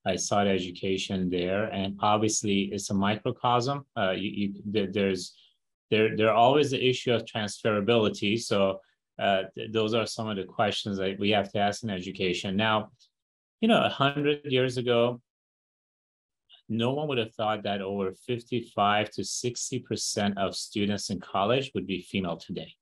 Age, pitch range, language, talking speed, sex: 30-49, 100-125 Hz, English, 155 wpm, male